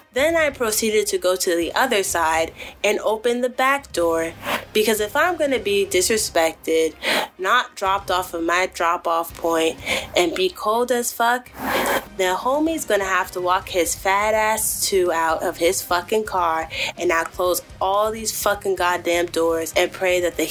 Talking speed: 180 wpm